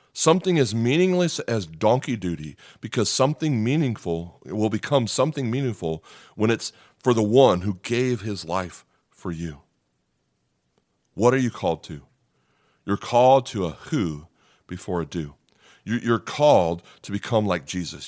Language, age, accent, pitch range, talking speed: English, 40-59, American, 95-130 Hz, 145 wpm